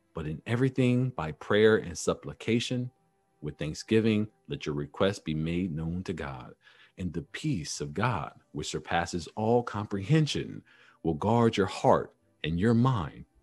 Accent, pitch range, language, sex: American, 95-140 Hz, English, male